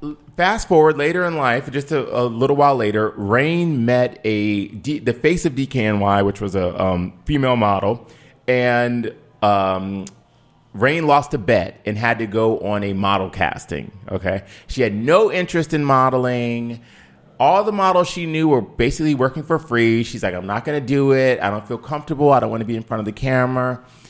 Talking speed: 195 wpm